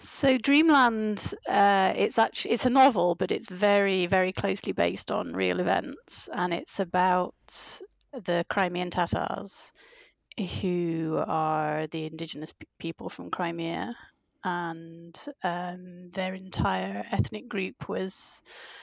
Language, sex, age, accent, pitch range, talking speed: English, female, 30-49, British, 170-215 Hz, 120 wpm